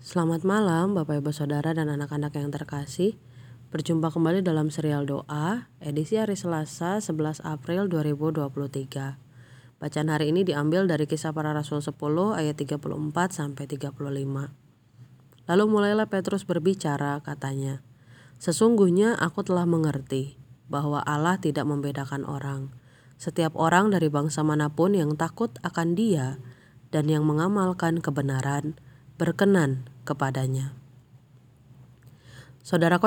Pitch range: 140-170 Hz